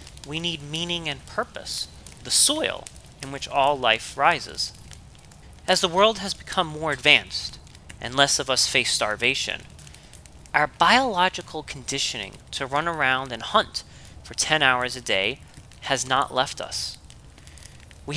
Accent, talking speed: American, 140 wpm